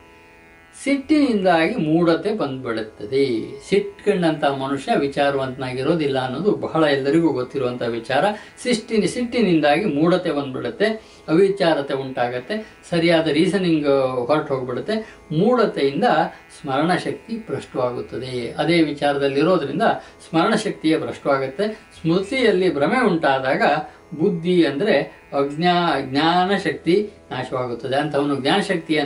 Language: Kannada